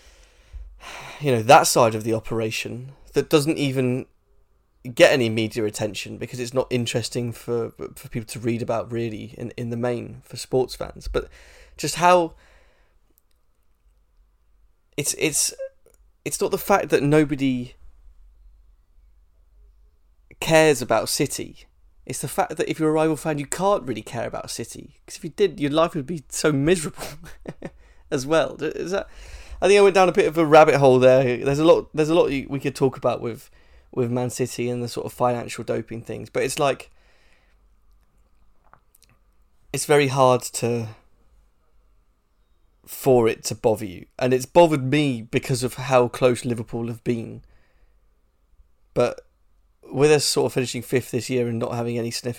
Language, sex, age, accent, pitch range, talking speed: English, male, 20-39, British, 100-140 Hz, 165 wpm